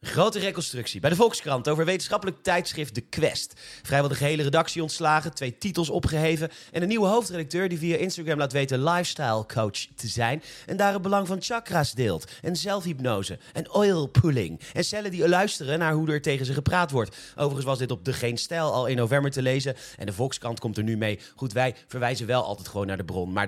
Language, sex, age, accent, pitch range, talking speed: Dutch, male, 30-49, Dutch, 120-170 Hz, 210 wpm